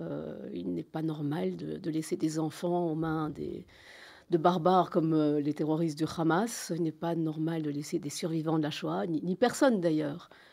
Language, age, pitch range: French, 50-69, 160-190 Hz